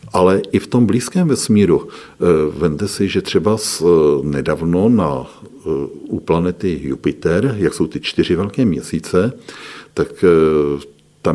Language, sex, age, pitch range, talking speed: Czech, male, 50-69, 80-100 Hz, 125 wpm